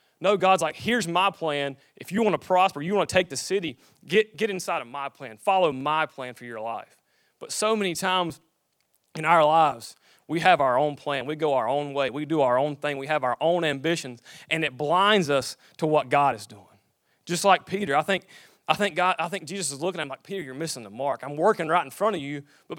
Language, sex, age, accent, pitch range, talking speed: English, male, 30-49, American, 140-180 Hz, 240 wpm